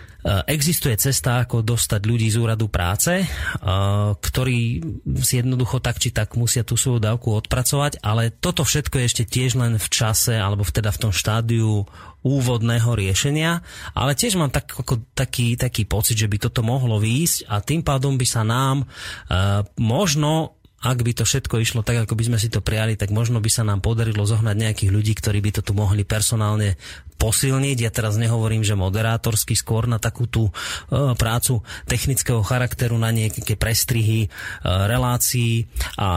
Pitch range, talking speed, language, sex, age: 110-130 Hz, 165 wpm, Slovak, male, 30-49